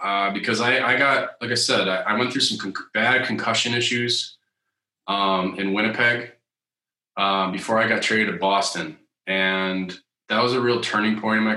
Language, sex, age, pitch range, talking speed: English, male, 20-39, 95-110 Hz, 180 wpm